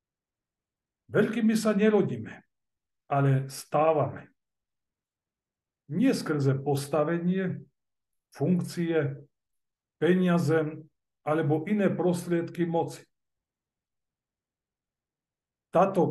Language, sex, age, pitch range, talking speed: Slovak, male, 50-69, 140-175 Hz, 50 wpm